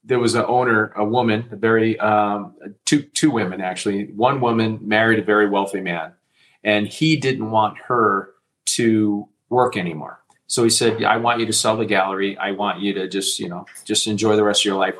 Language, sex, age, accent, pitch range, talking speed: English, male, 40-59, American, 105-125 Hz, 210 wpm